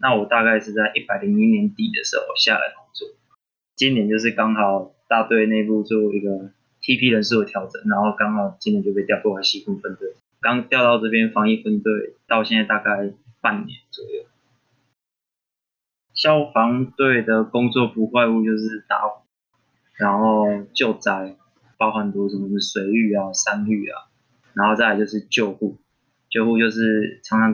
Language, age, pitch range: Chinese, 20-39, 105-125 Hz